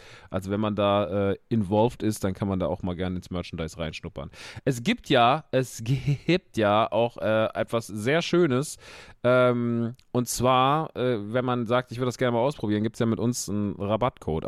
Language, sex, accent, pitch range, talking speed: German, male, German, 95-120 Hz, 200 wpm